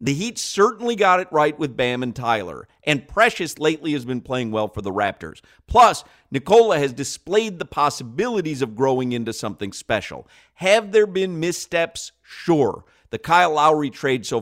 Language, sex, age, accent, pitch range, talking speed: English, male, 50-69, American, 105-165 Hz, 170 wpm